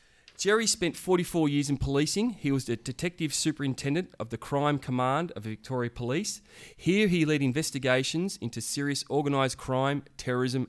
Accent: Australian